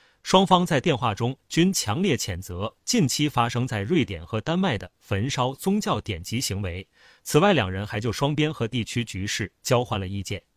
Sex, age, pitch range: male, 30-49, 105-145 Hz